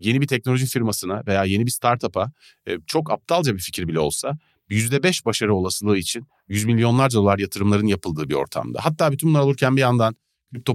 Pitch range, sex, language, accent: 95-140 Hz, male, Turkish, native